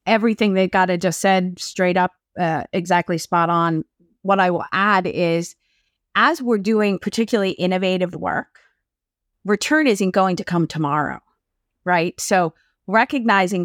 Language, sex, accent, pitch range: English, female, American, 180-220 Hz